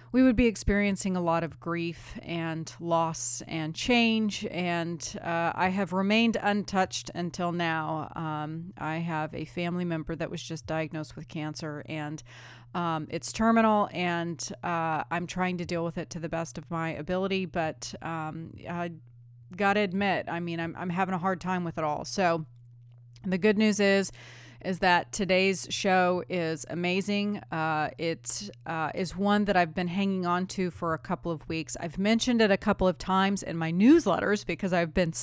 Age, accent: 30-49, American